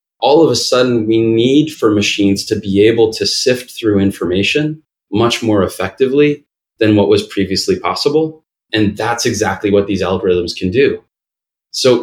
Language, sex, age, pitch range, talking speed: English, male, 20-39, 100-130 Hz, 160 wpm